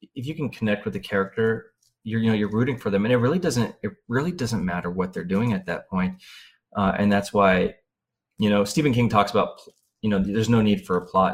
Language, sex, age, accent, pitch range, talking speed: English, male, 30-49, American, 100-120 Hz, 245 wpm